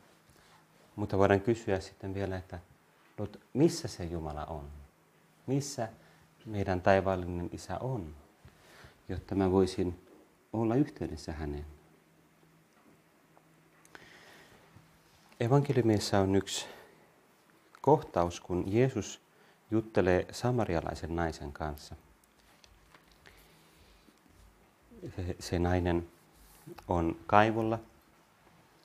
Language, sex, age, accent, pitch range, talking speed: Finnish, male, 30-49, native, 85-100 Hz, 75 wpm